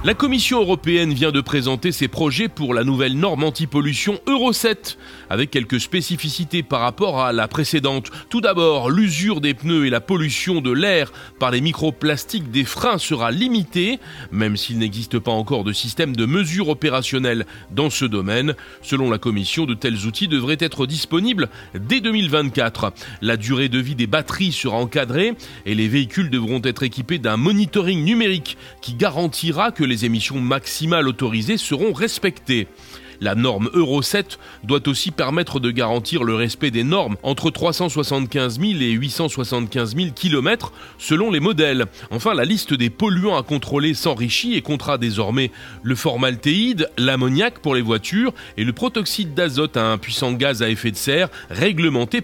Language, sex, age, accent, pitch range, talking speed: French, male, 30-49, French, 120-175 Hz, 165 wpm